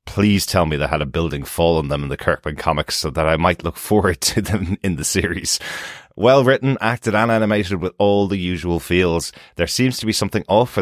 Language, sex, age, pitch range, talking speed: English, male, 30-49, 80-100 Hz, 235 wpm